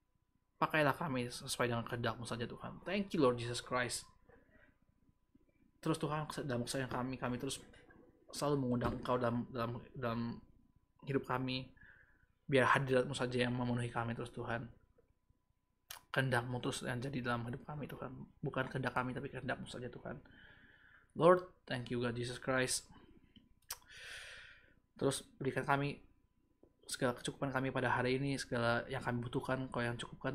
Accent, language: native, Indonesian